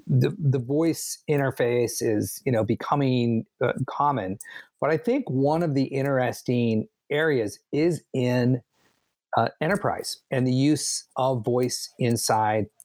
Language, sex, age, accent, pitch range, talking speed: English, male, 40-59, American, 115-135 Hz, 130 wpm